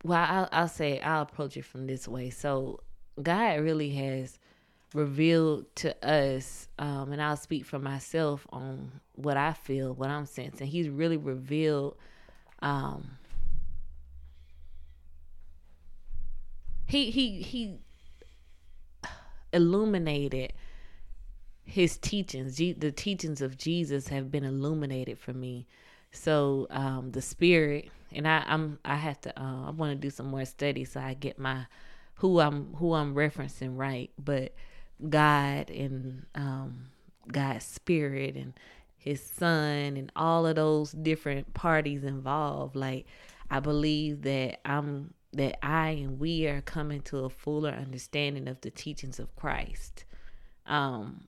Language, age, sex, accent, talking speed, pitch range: English, 20-39, female, American, 135 wpm, 130-155 Hz